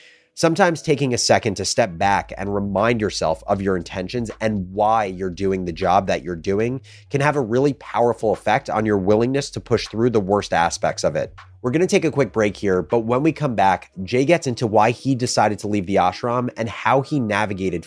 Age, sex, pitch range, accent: 30-49, male, 100-125 Hz, American